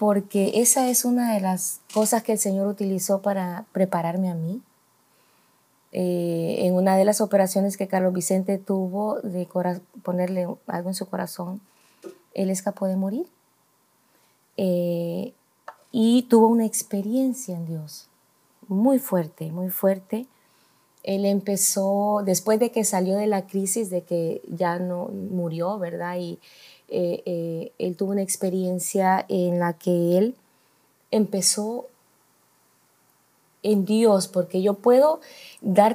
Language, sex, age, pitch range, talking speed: Spanish, female, 20-39, 180-220 Hz, 135 wpm